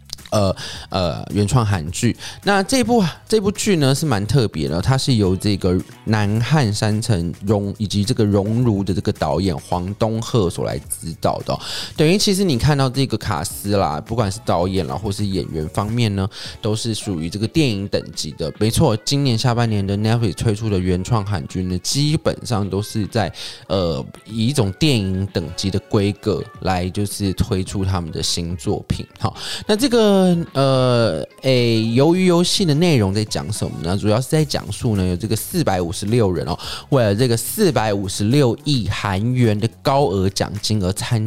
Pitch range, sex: 100-125 Hz, male